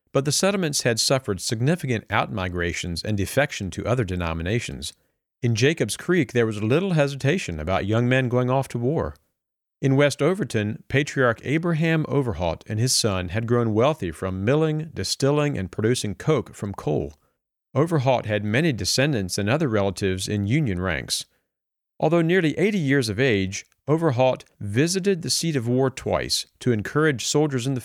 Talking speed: 160 wpm